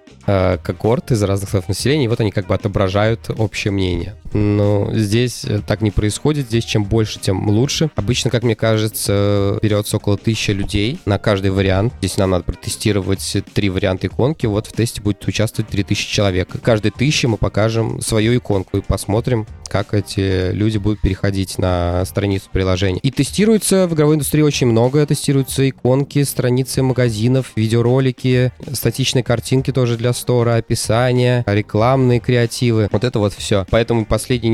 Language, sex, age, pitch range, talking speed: Russian, male, 20-39, 100-125 Hz, 155 wpm